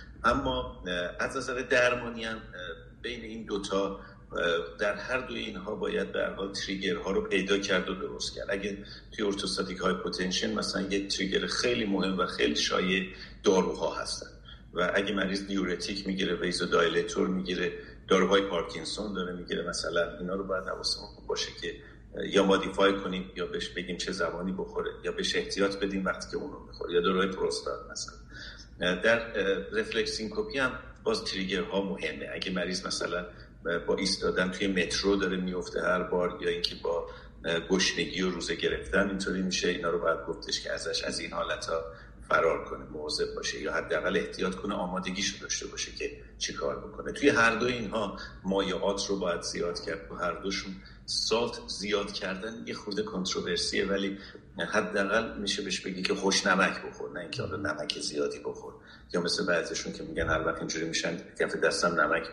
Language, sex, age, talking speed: Persian, male, 50-69, 165 wpm